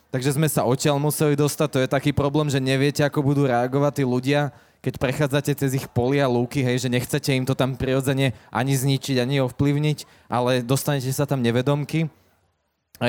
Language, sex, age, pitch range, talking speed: Slovak, male, 20-39, 120-145 Hz, 185 wpm